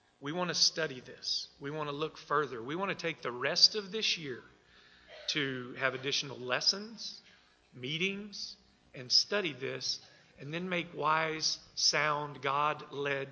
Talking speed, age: 150 wpm, 40-59